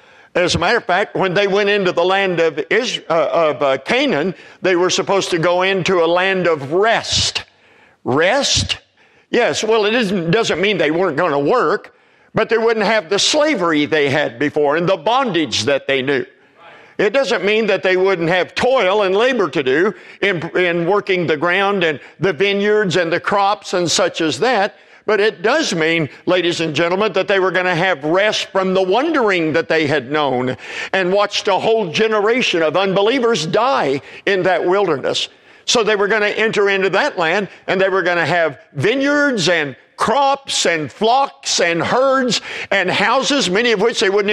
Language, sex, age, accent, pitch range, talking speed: English, male, 50-69, American, 175-220 Hz, 190 wpm